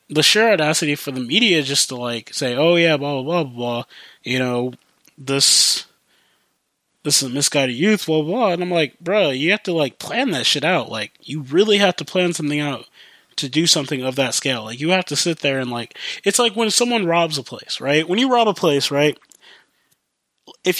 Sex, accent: male, American